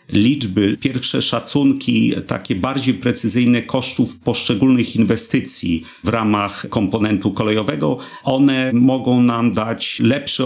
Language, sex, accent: Polish, male, native